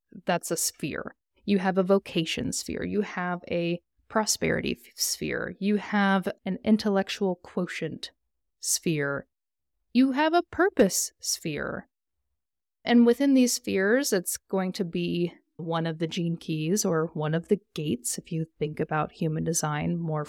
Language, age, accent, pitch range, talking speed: English, 30-49, American, 165-215 Hz, 145 wpm